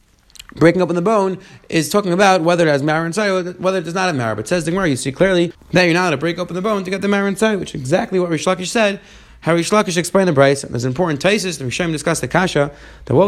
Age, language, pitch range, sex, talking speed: 30-49, English, 150-190 Hz, male, 285 wpm